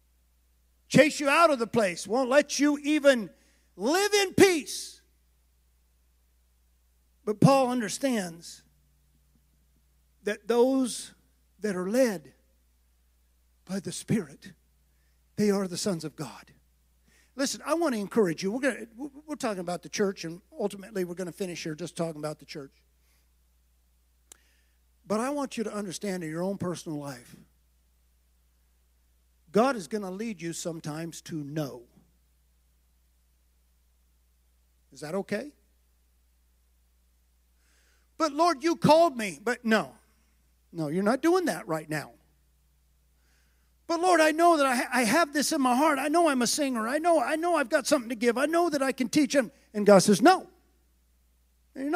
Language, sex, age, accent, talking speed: English, male, 50-69, American, 150 wpm